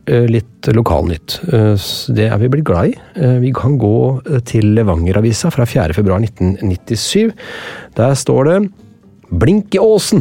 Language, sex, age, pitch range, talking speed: English, male, 30-49, 105-155 Hz, 125 wpm